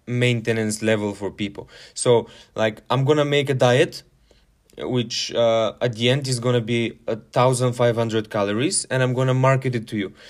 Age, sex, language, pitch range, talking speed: 20-39, male, English, 115-135 Hz, 180 wpm